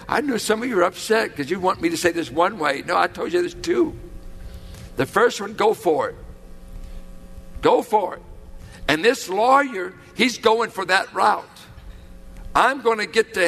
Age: 60-79